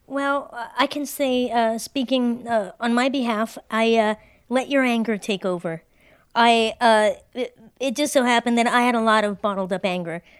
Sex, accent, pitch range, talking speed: female, American, 210-245 Hz, 190 wpm